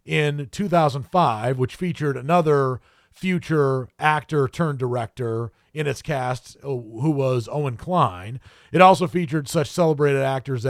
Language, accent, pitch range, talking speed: English, American, 130-180 Hz, 110 wpm